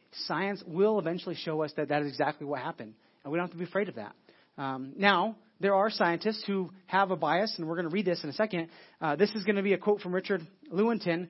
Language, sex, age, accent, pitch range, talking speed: English, male, 30-49, American, 165-205 Hz, 260 wpm